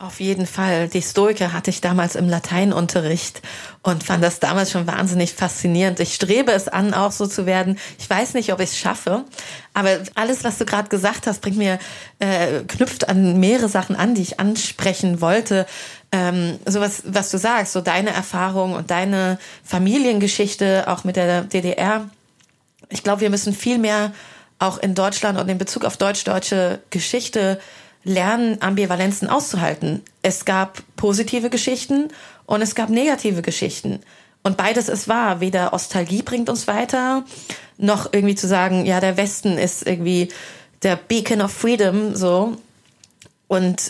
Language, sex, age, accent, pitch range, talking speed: German, female, 30-49, German, 185-215 Hz, 160 wpm